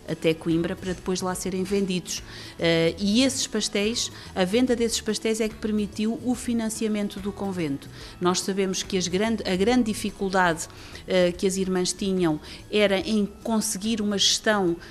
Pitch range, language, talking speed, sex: 170-205 Hz, Portuguese, 145 wpm, female